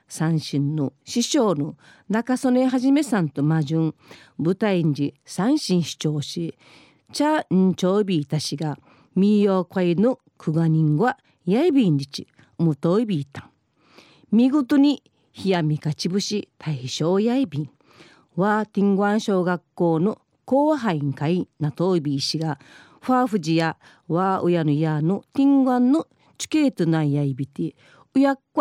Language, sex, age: Japanese, female, 40-59